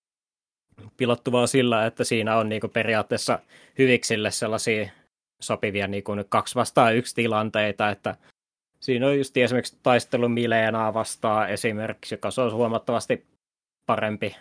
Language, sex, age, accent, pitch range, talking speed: Finnish, male, 20-39, native, 105-125 Hz, 115 wpm